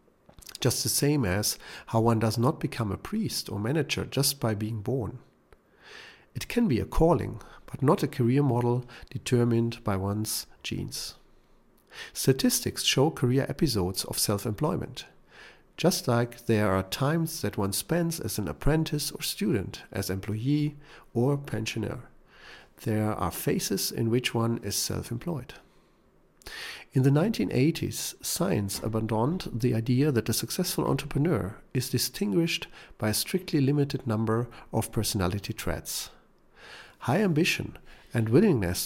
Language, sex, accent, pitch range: English, male, German, 110-145 Hz